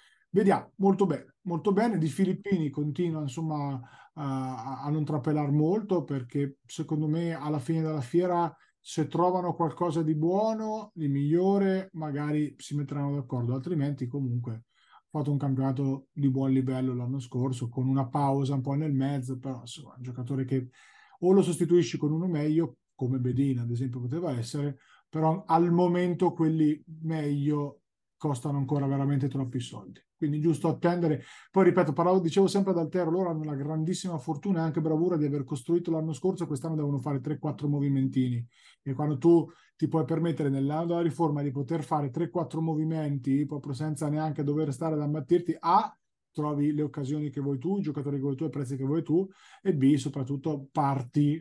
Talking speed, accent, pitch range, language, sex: 170 wpm, native, 135-165 Hz, Italian, male